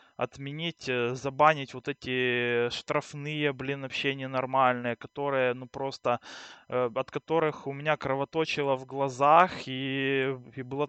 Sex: male